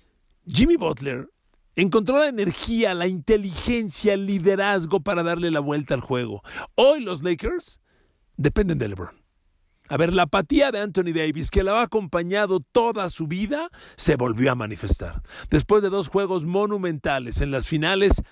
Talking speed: 155 wpm